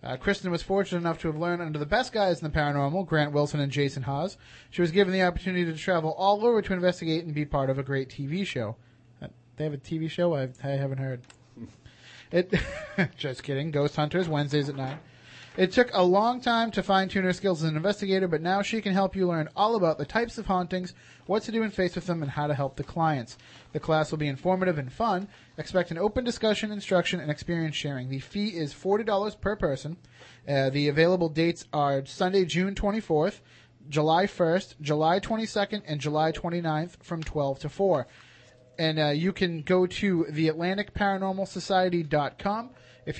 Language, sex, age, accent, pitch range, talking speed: English, male, 30-49, American, 140-185 Hz, 195 wpm